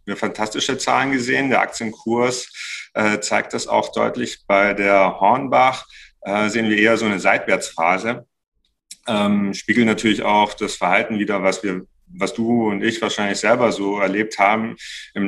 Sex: male